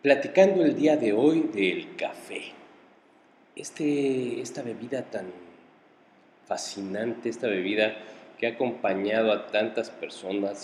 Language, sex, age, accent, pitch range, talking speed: Spanish, male, 40-59, Mexican, 100-140 Hz, 115 wpm